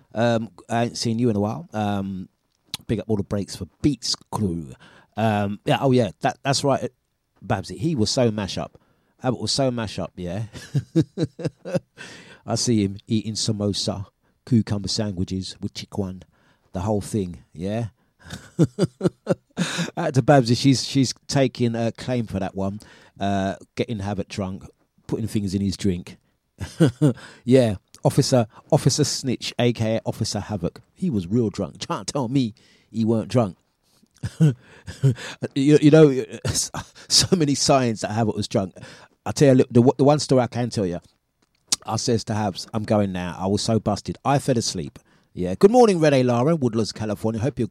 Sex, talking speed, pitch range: male, 165 wpm, 100-135 Hz